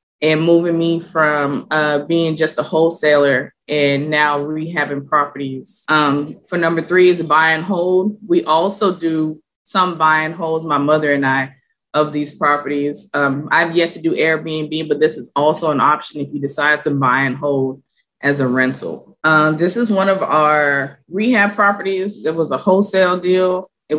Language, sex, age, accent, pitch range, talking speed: English, female, 20-39, American, 155-185 Hz, 180 wpm